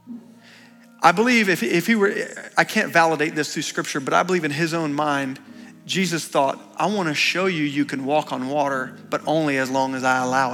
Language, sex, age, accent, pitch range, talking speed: English, male, 40-59, American, 145-200 Hz, 215 wpm